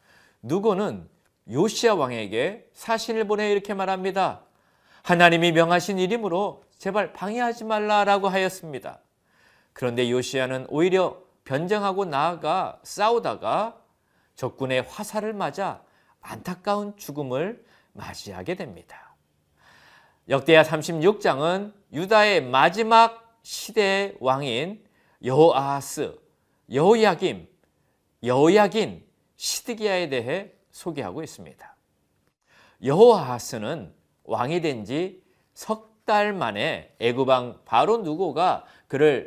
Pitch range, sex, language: 150-215 Hz, male, Korean